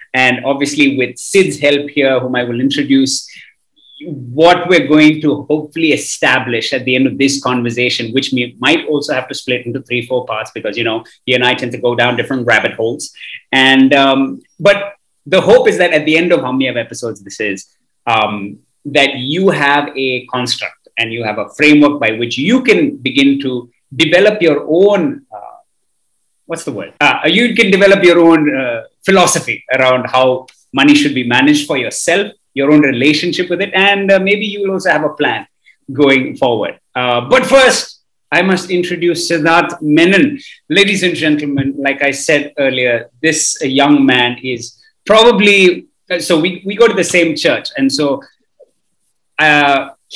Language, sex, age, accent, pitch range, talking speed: English, male, 30-49, Indian, 130-185 Hz, 180 wpm